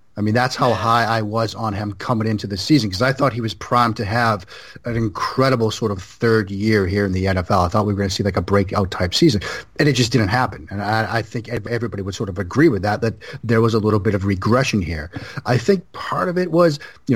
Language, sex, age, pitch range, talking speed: English, male, 30-49, 105-130 Hz, 260 wpm